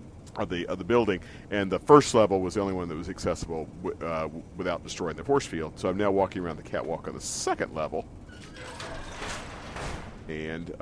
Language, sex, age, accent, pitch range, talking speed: English, male, 40-59, American, 80-105 Hz, 195 wpm